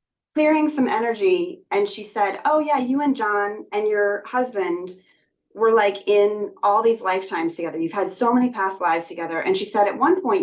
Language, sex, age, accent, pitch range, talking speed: English, female, 30-49, American, 190-265 Hz, 195 wpm